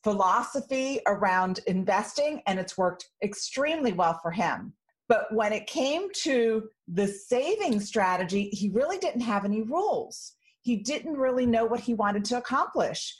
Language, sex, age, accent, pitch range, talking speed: English, female, 40-59, American, 180-235 Hz, 150 wpm